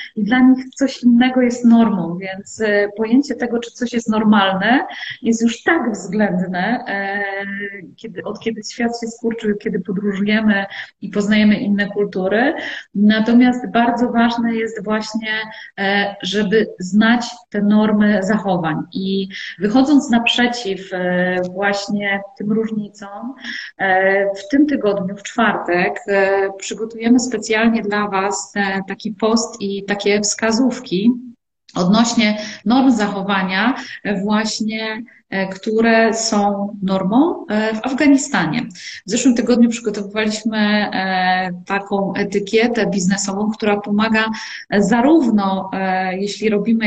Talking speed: 105 wpm